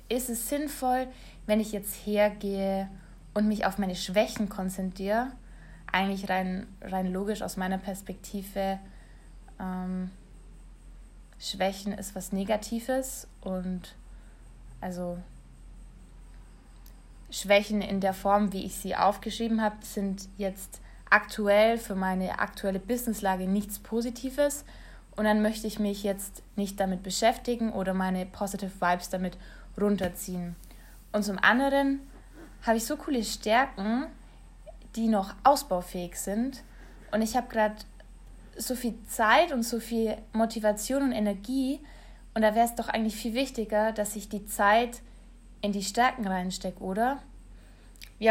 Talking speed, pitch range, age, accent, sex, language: 130 wpm, 185-225 Hz, 20-39, German, female, German